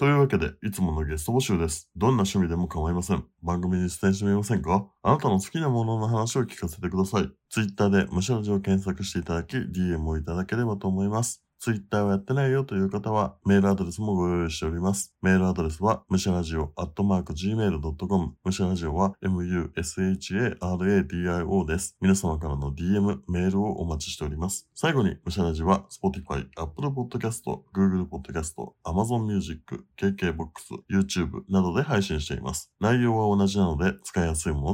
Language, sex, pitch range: Japanese, male, 80-100 Hz